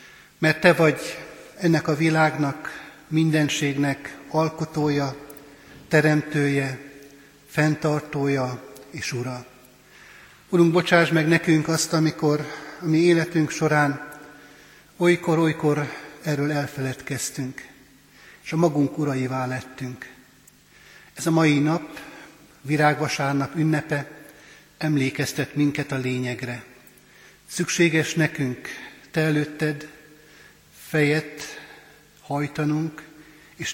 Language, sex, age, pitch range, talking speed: Hungarian, male, 60-79, 140-155 Hz, 85 wpm